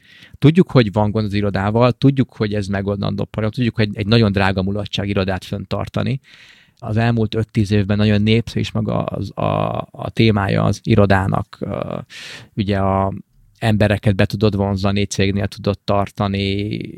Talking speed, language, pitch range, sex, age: 150 wpm, Hungarian, 100-115 Hz, male, 20-39